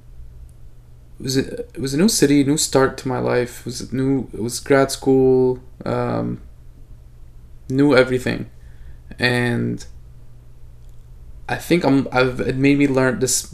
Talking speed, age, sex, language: 150 wpm, 20-39, male, English